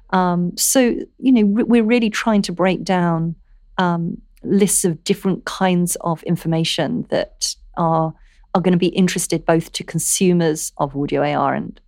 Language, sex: English, female